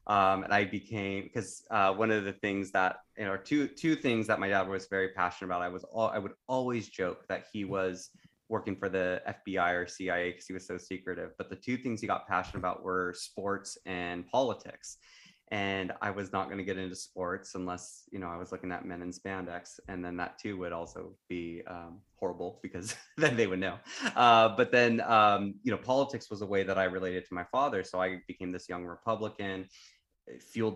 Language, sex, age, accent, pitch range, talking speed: English, male, 20-39, American, 90-100 Hz, 220 wpm